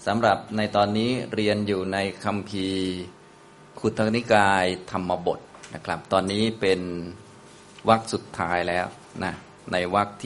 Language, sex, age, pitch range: Thai, male, 20-39, 90-110 Hz